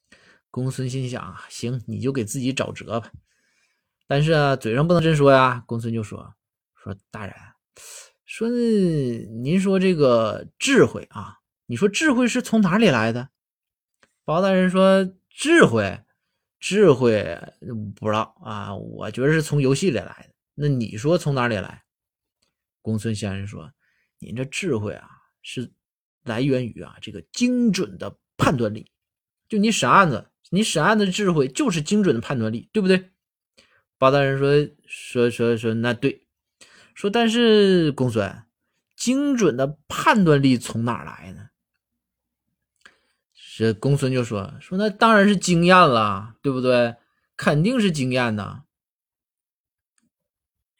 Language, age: Chinese, 20-39